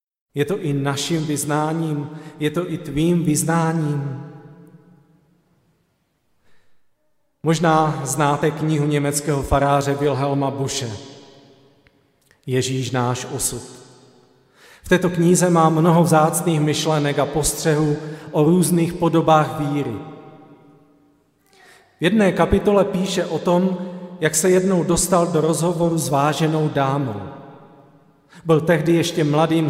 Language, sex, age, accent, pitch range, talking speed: Czech, male, 40-59, native, 135-160 Hz, 105 wpm